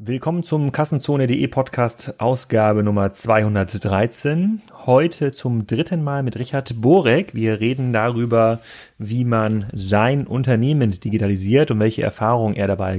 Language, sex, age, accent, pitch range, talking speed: German, male, 30-49, German, 110-130 Hz, 125 wpm